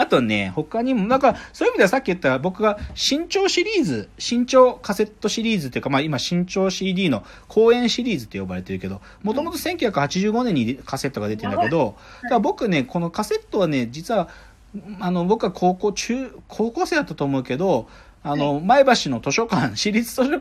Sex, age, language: male, 40-59, Japanese